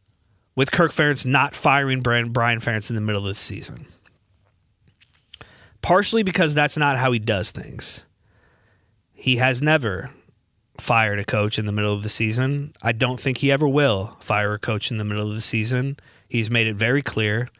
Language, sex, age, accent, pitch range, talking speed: English, male, 30-49, American, 105-135 Hz, 180 wpm